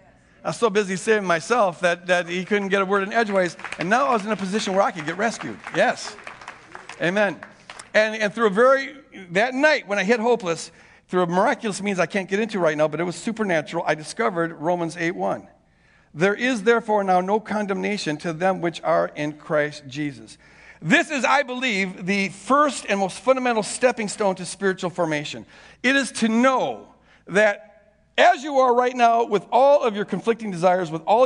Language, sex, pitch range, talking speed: English, male, 175-240 Hz, 200 wpm